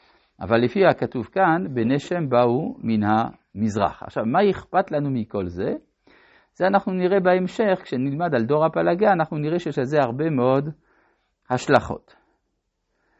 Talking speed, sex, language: 140 wpm, male, Hebrew